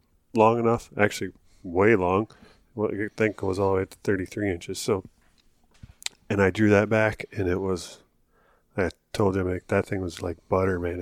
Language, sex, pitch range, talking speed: English, male, 95-110 Hz, 190 wpm